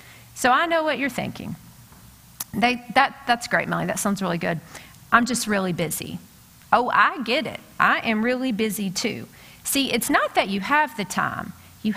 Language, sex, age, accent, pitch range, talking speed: English, female, 40-59, American, 190-240 Hz, 175 wpm